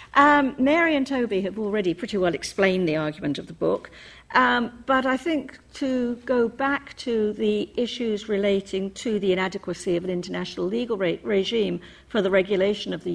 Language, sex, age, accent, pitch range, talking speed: English, female, 50-69, British, 180-235 Hz, 180 wpm